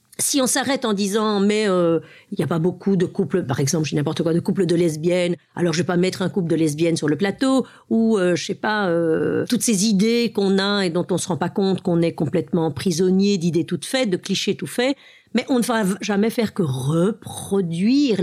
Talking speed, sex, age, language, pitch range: 250 wpm, female, 50-69, French, 175-215 Hz